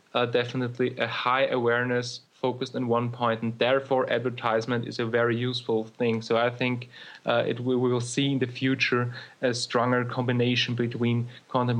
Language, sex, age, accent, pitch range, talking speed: English, male, 30-49, German, 120-130 Hz, 170 wpm